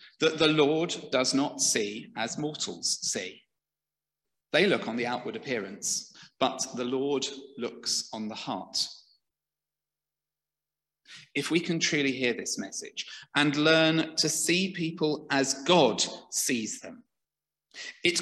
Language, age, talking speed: English, 40-59, 130 wpm